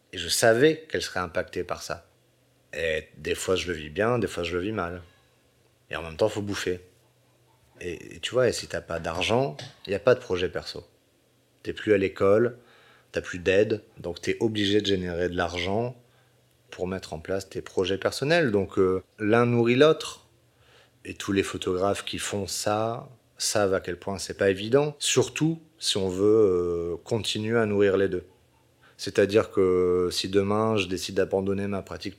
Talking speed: 200 wpm